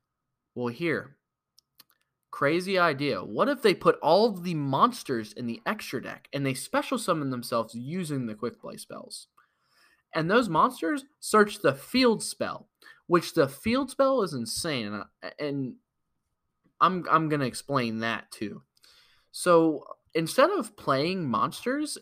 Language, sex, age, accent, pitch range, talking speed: English, male, 20-39, American, 130-200 Hz, 140 wpm